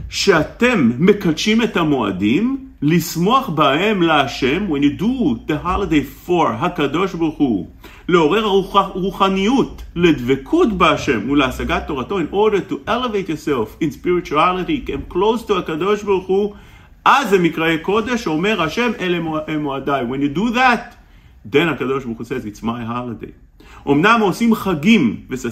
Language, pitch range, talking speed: English, 140-210 Hz, 85 wpm